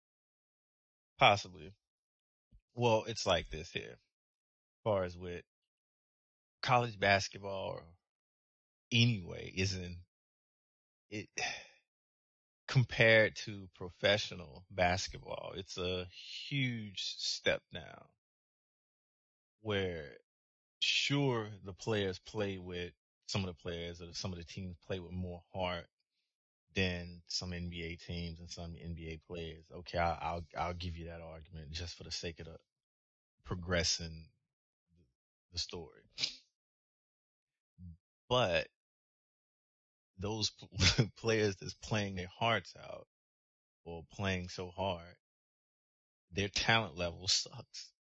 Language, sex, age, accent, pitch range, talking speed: English, male, 20-39, American, 85-100 Hz, 105 wpm